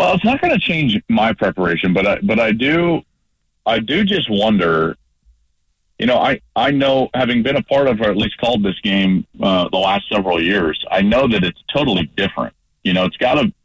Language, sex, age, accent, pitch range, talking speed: English, male, 40-59, American, 95-140 Hz, 215 wpm